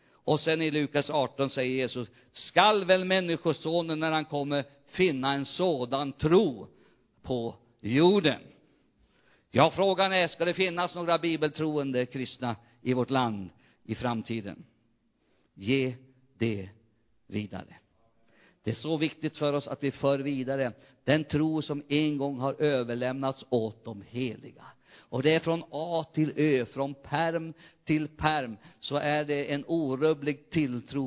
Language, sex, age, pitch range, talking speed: Swedish, male, 50-69, 130-165 Hz, 140 wpm